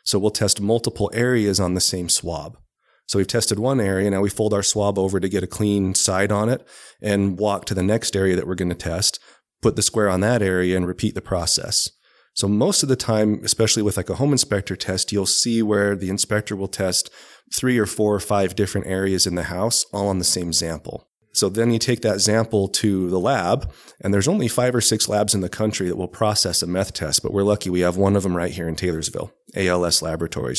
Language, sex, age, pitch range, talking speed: English, male, 30-49, 90-105 Hz, 235 wpm